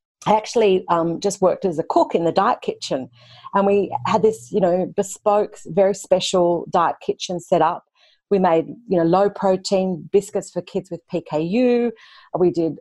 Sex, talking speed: female, 175 wpm